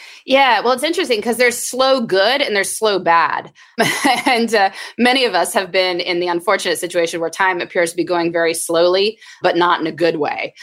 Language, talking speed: English, 210 wpm